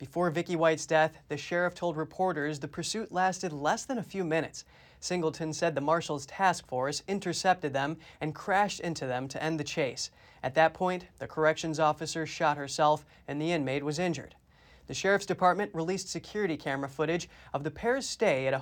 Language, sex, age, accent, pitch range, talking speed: English, male, 30-49, American, 150-180 Hz, 185 wpm